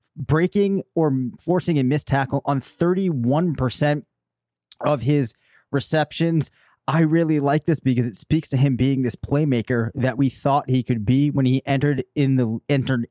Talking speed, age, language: 150 wpm, 30-49, English